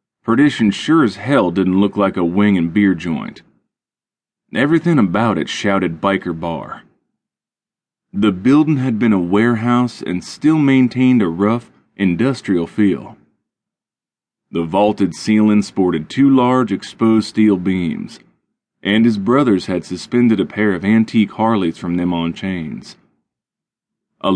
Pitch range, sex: 90-120 Hz, male